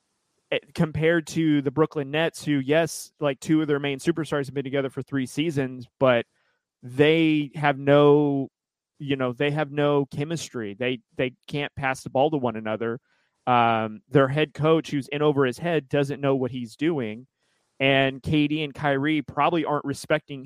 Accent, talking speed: American, 175 wpm